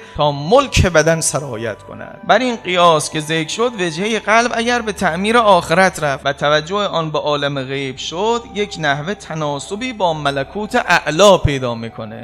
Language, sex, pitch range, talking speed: Persian, male, 135-190 Hz, 160 wpm